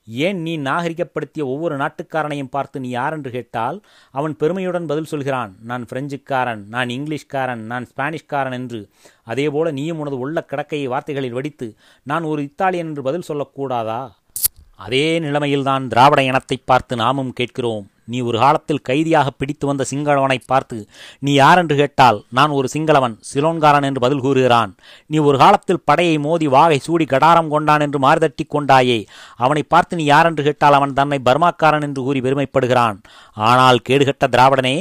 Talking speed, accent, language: 140 wpm, native, Tamil